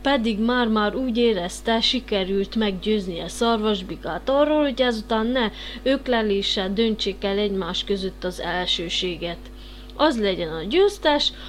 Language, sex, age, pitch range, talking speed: Hungarian, female, 30-49, 200-265 Hz, 120 wpm